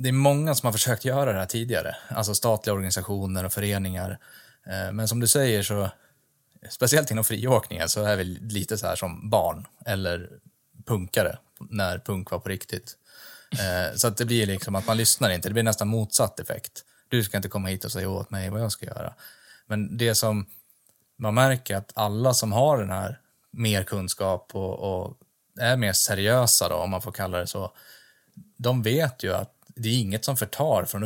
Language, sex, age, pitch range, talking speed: Swedish, male, 20-39, 95-120 Hz, 190 wpm